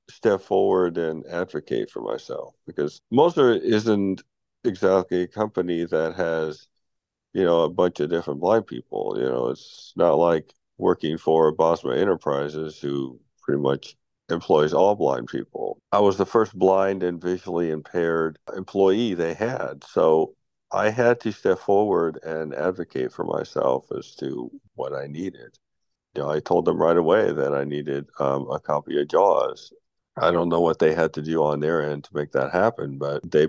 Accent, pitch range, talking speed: American, 75-100 Hz, 170 wpm